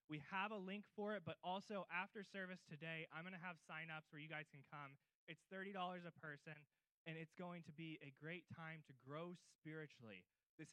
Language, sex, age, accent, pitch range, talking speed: English, male, 20-39, American, 145-175 Hz, 205 wpm